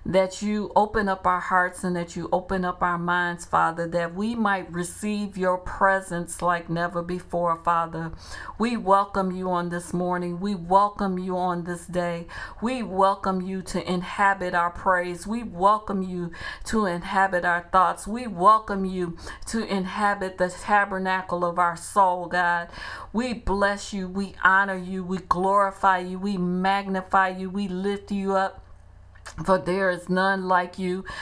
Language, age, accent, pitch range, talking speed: English, 50-69, American, 180-200 Hz, 160 wpm